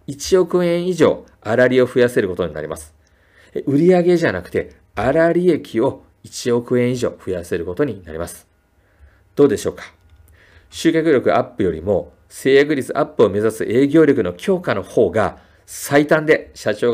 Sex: male